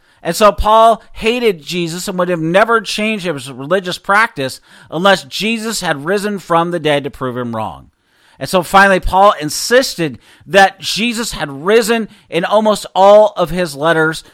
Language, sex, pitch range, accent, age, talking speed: English, male, 145-185 Hz, American, 40-59, 165 wpm